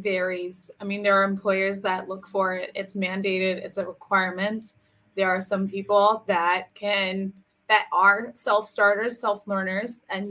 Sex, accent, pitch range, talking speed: female, American, 185-210 Hz, 150 wpm